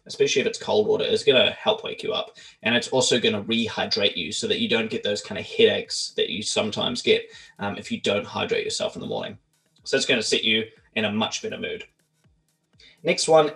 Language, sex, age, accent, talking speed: English, male, 20-39, Australian, 240 wpm